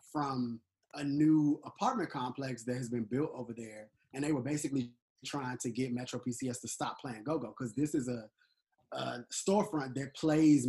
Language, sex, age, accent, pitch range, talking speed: English, male, 20-39, American, 125-150 Hz, 180 wpm